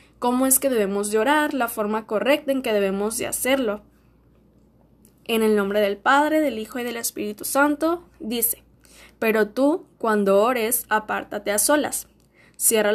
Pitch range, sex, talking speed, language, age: 210-255 Hz, female, 160 wpm, Spanish, 10-29